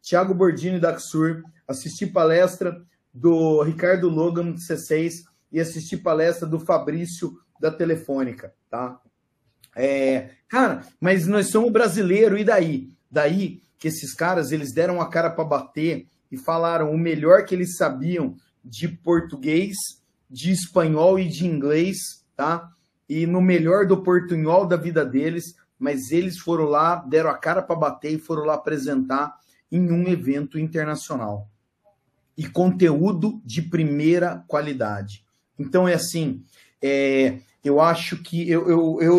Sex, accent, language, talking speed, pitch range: male, Brazilian, Portuguese, 140 wpm, 145-180 Hz